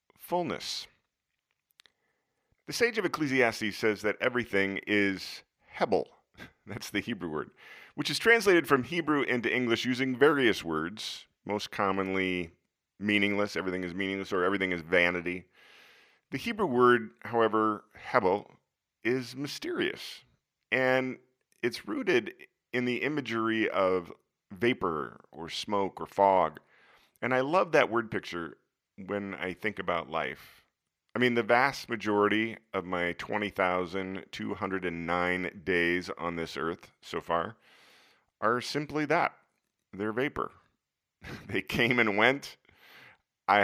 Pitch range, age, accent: 90-125 Hz, 40-59, American